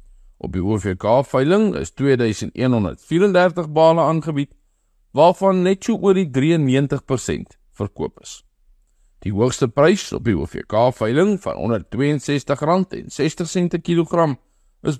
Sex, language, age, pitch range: male, English, 50-69, 120-185 Hz